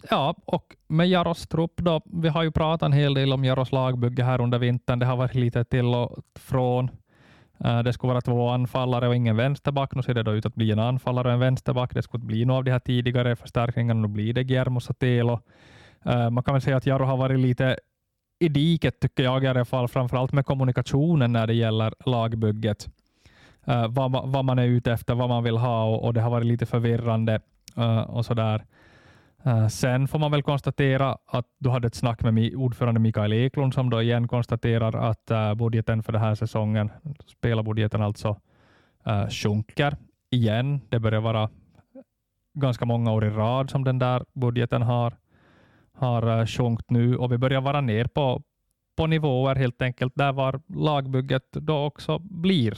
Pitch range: 115-130 Hz